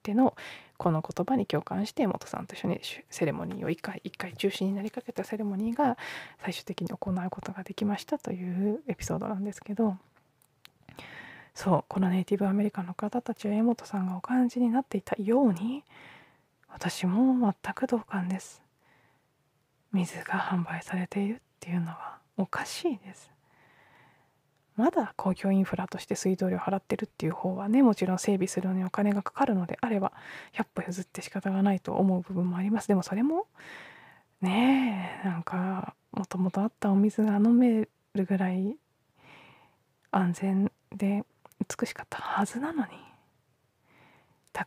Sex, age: female, 20-39